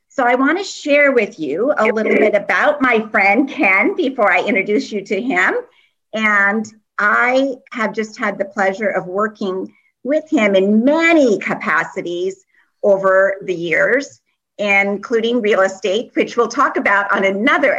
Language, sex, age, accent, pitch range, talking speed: English, female, 50-69, American, 200-270 Hz, 155 wpm